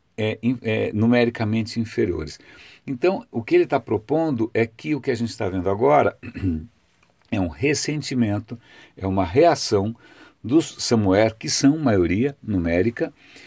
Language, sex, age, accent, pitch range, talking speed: Portuguese, male, 60-79, Brazilian, 95-135 Hz, 130 wpm